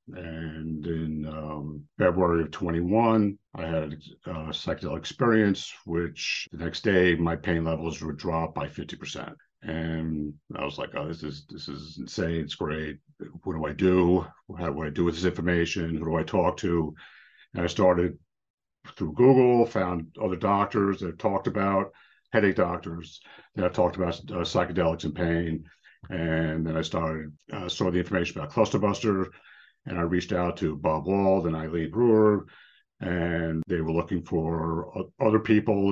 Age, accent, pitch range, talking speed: 50-69, American, 80-100 Hz, 165 wpm